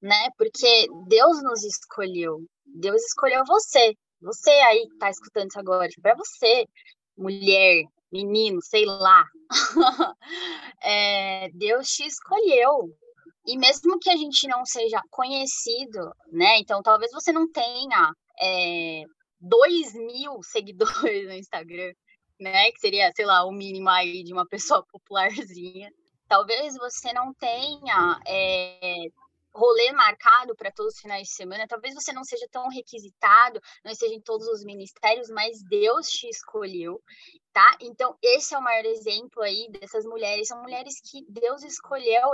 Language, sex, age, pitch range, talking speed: Portuguese, female, 10-29, 215-335 Hz, 145 wpm